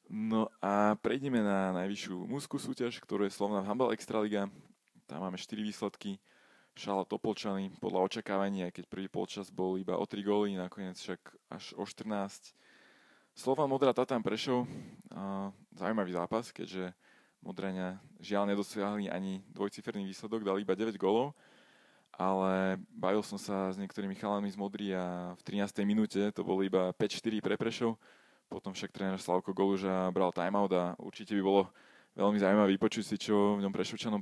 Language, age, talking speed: Slovak, 20-39, 155 wpm